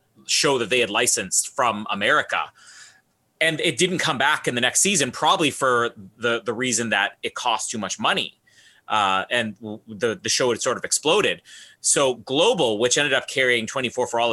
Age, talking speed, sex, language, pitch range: 30-49, 195 wpm, male, English, 115-170 Hz